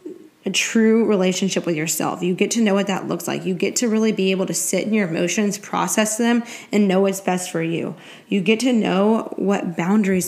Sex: female